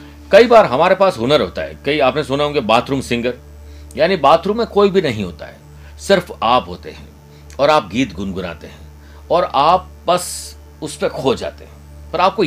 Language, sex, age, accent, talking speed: Hindi, male, 50-69, native, 195 wpm